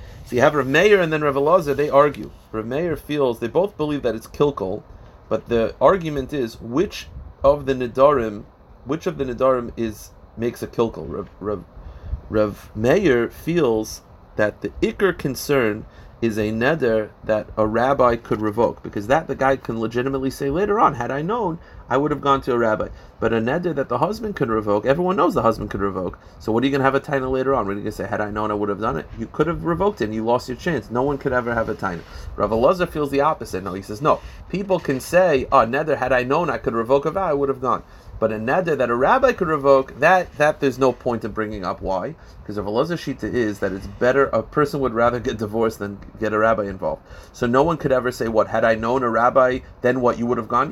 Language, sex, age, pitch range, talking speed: English, male, 30-49, 110-140 Hz, 245 wpm